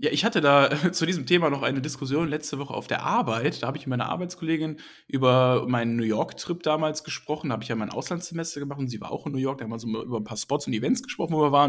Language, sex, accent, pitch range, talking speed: German, male, German, 130-170 Hz, 285 wpm